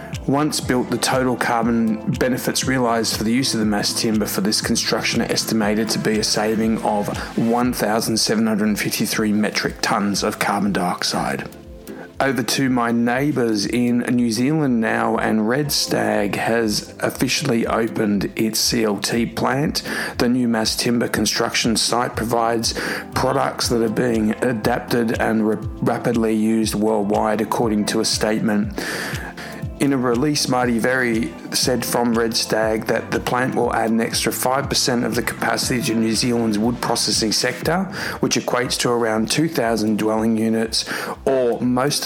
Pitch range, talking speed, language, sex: 110-120 Hz, 145 wpm, English, male